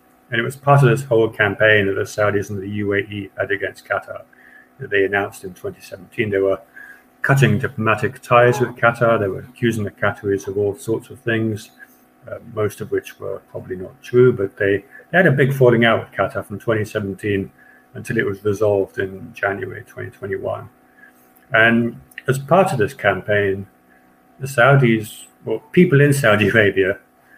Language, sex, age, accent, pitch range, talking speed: English, male, 50-69, British, 100-125 Hz, 175 wpm